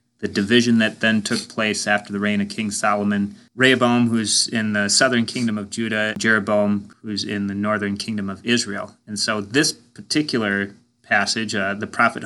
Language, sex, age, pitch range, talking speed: English, male, 30-49, 105-120 Hz, 175 wpm